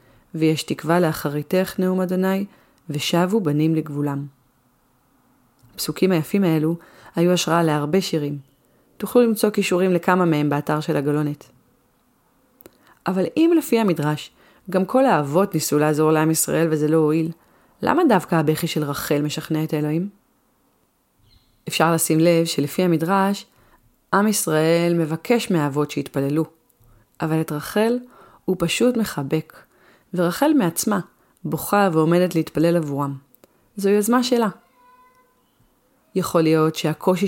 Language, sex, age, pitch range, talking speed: Hebrew, female, 30-49, 150-190 Hz, 120 wpm